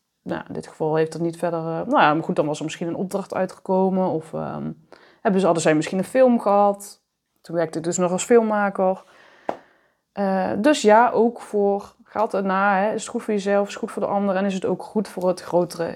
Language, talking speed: Dutch, 225 wpm